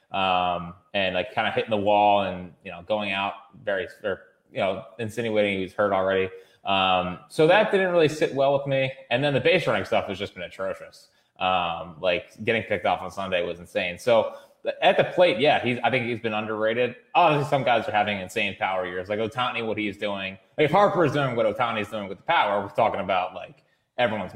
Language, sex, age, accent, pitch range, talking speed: English, male, 20-39, American, 100-130 Hz, 215 wpm